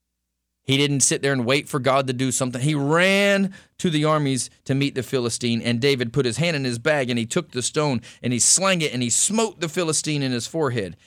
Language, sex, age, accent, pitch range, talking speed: English, male, 40-59, American, 125-170 Hz, 245 wpm